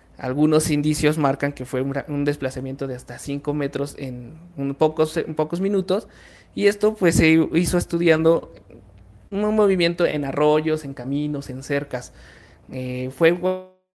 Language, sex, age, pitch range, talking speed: Spanish, male, 30-49, 140-165 Hz, 135 wpm